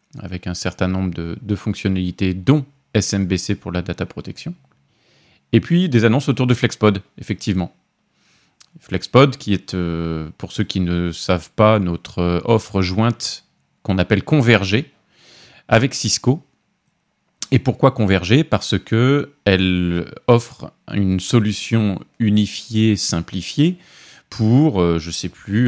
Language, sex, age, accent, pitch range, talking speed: French, male, 30-49, French, 90-125 Hz, 125 wpm